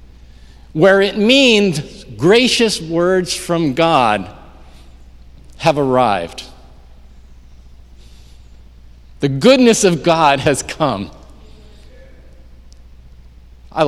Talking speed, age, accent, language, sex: 70 wpm, 50-69, American, English, male